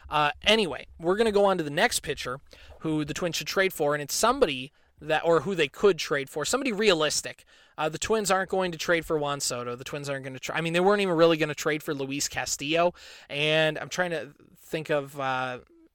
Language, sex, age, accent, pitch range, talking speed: English, male, 20-39, American, 150-180 Hz, 240 wpm